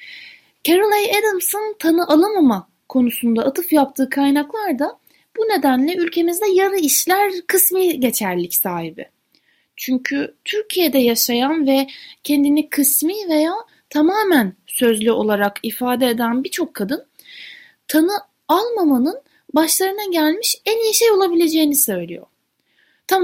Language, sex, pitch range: Turkish, female, 235-345 Hz